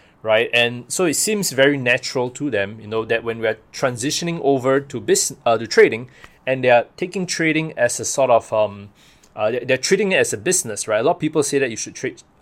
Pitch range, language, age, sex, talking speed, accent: 120-150 Hz, English, 20-39, male, 225 wpm, Malaysian